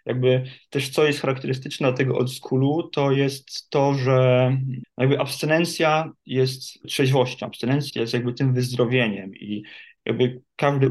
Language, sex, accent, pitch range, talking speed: Polish, male, native, 125-140 Hz, 130 wpm